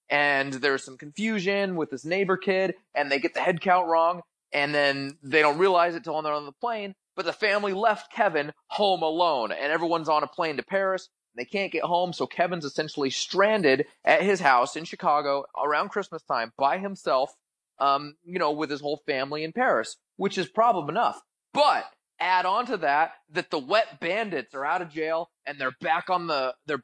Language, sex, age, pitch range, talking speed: English, male, 30-49, 150-190 Hz, 205 wpm